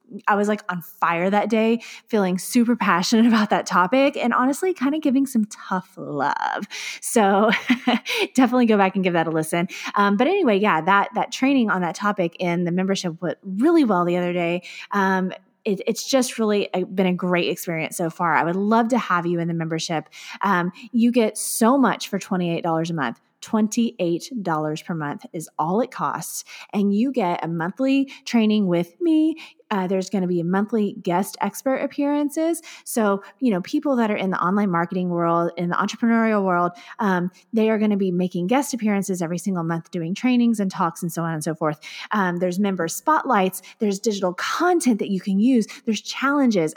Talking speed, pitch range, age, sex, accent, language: 200 wpm, 175-235 Hz, 20-39, female, American, English